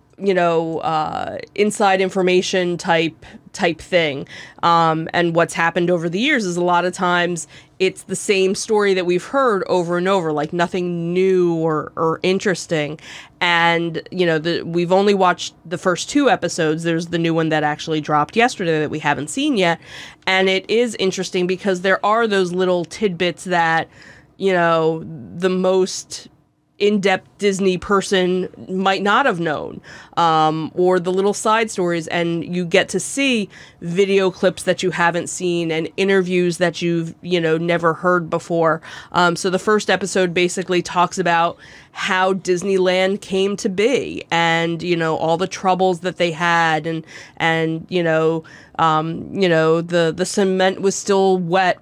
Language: English